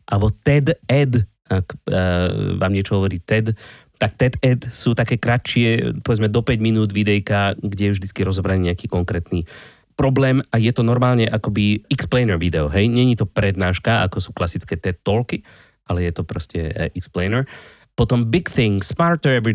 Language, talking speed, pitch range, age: Slovak, 155 wpm, 95-120 Hz, 30-49